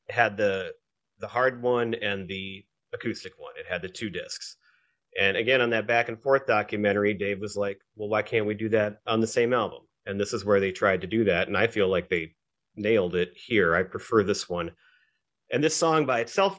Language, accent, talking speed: English, American, 220 wpm